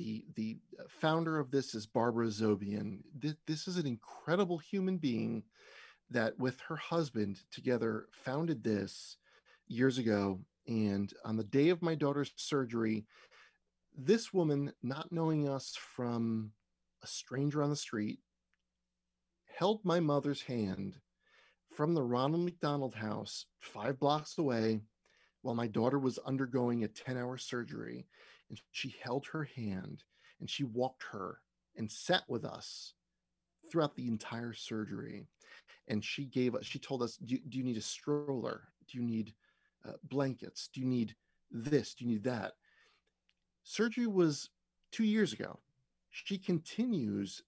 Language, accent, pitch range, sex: English, American, 110-150 Hz, male